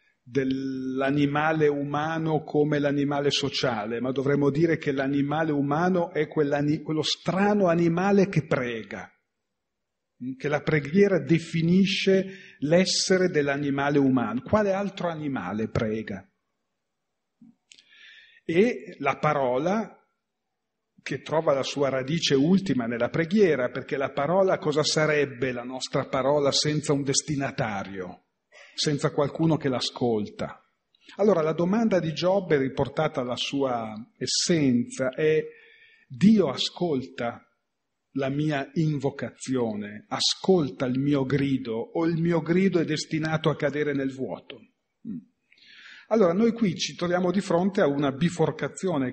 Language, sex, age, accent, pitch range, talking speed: Italian, male, 40-59, native, 135-175 Hz, 115 wpm